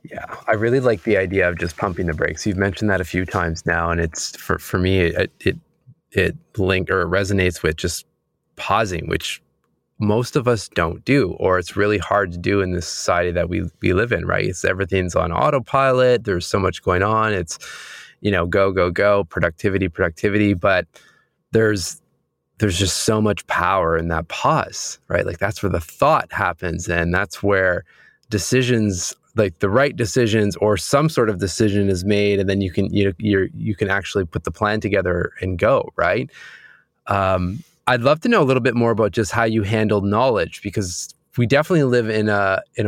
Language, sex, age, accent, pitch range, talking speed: English, male, 20-39, American, 95-110 Hz, 195 wpm